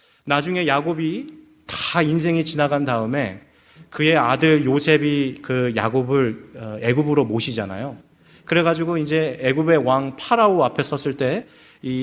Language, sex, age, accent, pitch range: Korean, male, 30-49, native, 125-180 Hz